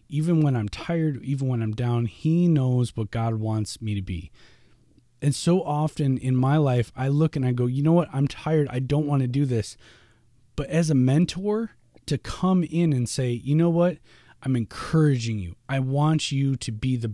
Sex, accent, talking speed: male, American, 205 wpm